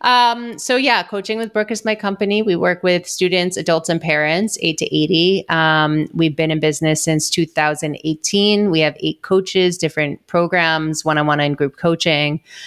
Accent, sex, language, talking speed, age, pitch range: American, female, English, 170 wpm, 30-49, 155-175 Hz